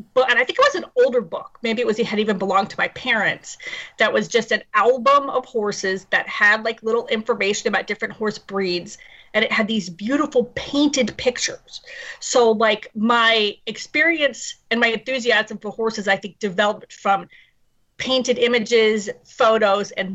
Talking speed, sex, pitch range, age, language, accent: 175 wpm, female, 210-285 Hz, 30-49, English, American